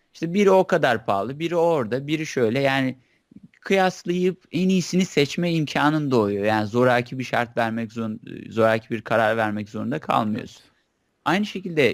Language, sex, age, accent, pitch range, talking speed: Turkish, male, 30-49, native, 115-170 Hz, 150 wpm